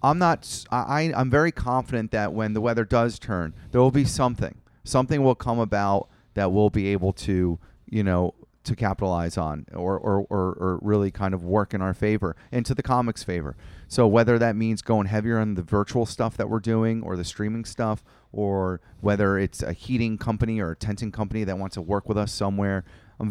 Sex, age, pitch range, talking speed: male, 30-49, 95-115 Hz, 205 wpm